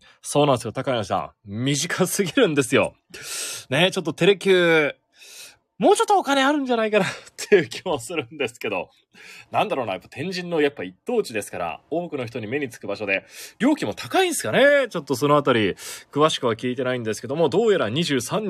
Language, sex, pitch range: Japanese, male, 125-190 Hz